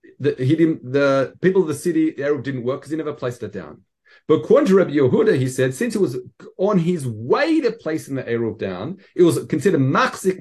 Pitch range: 130-185 Hz